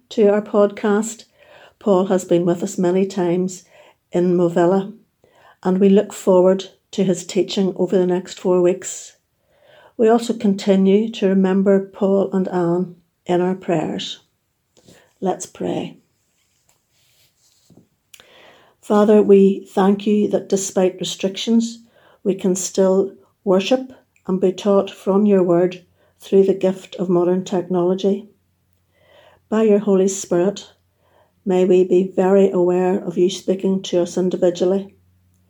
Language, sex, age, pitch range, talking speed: English, female, 60-79, 175-195 Hz, 125 wpm